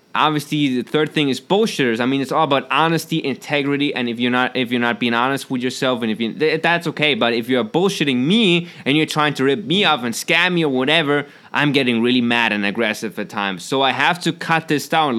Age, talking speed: 20-39, 245 wpm